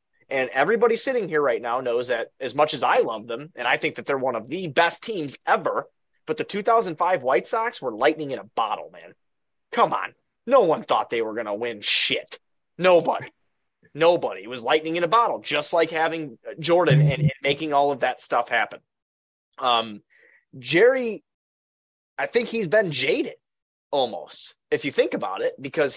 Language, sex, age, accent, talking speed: English, male, 30-49, American, 185 wpm